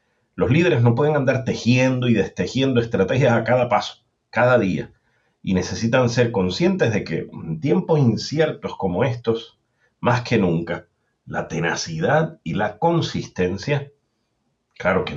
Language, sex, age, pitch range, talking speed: English, male, 40-59, 100-130 Hz, 140 wpm